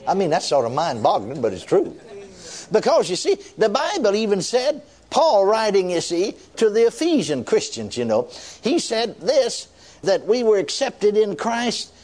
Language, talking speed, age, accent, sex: English, 175 wpm, 60-79, American, male